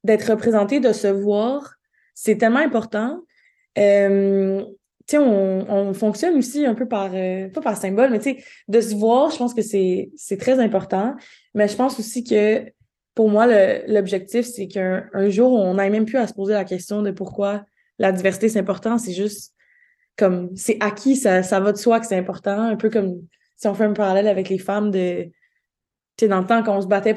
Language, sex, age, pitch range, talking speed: French, female, 20-39, 195-235 Hz, 200 wpm